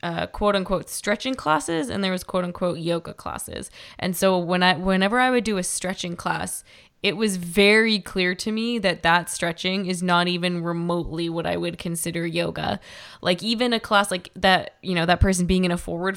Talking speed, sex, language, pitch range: 205 wpm, female, English, 175-215 Hz